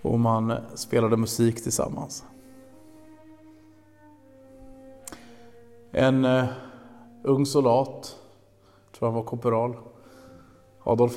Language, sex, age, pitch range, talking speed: Swedish, male, 30-49, 100-120 Hz, 75 wpm